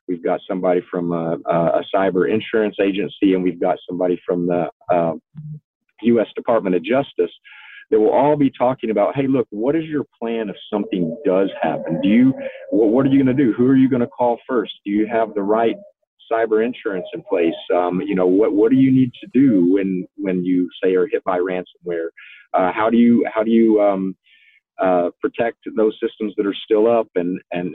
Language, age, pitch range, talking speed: English, 40-59, 95-135 Hz, 210 wpm